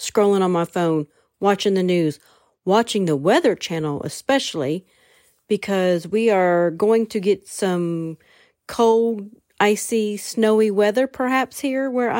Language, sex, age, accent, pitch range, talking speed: English, female, 40-59, American, 180-240 Hz, 130 wpm